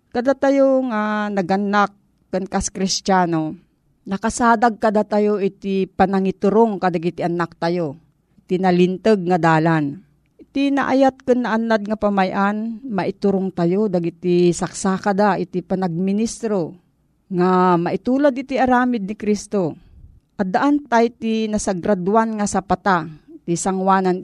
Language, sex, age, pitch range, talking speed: Filipino, female, 40-59, 180-225 Hz, 110 wpm